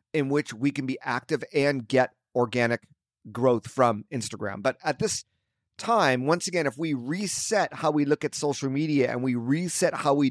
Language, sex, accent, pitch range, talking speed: English, male, American, 120-150 Hz, 185 wpm